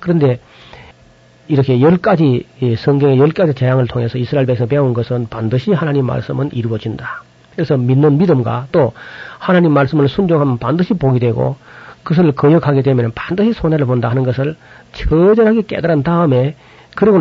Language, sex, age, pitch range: Korean, male, 40-59, 125-160 Hz